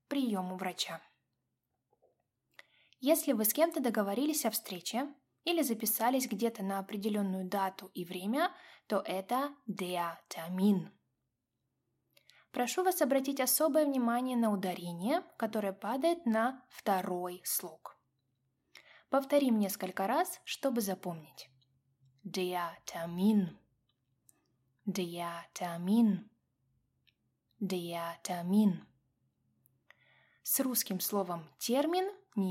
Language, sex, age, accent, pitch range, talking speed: Russian, female, 20-39, native, 175-260 Hz, 85 wpm